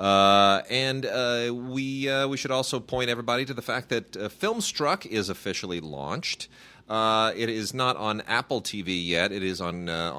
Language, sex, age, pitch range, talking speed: English, male, 30-49, 85-110 Hz, 185 wpm